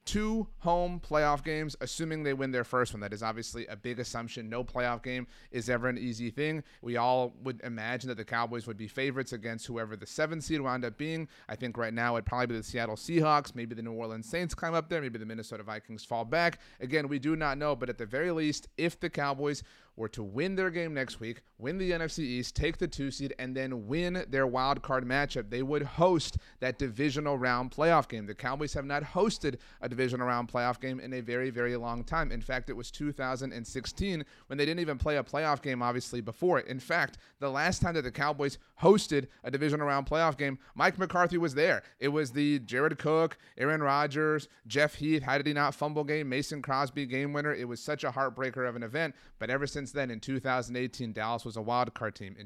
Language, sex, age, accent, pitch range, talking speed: English, male, 30-49, American, 120-150 Hz, 225 wpm